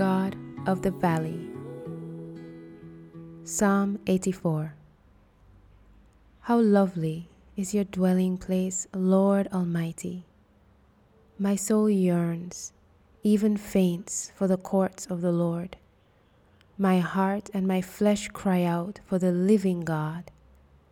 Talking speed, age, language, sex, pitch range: 105 wpm, 20-39, English, female, 165-195 Hz